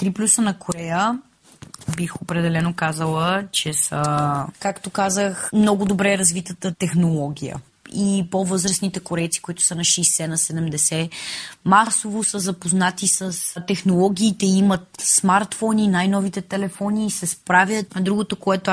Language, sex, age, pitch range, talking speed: Bulgarian, female, 20-39, 170-200 Hz, 120 wpm